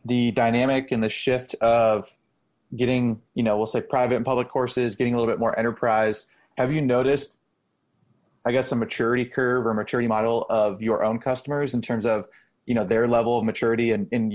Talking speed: 195 wpm